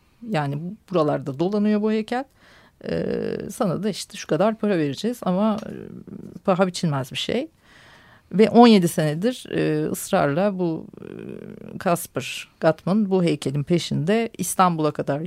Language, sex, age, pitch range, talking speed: Turkish, female, 40-59, 160-215 Hz, 120 wpm